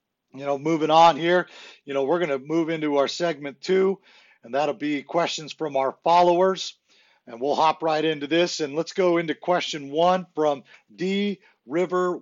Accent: American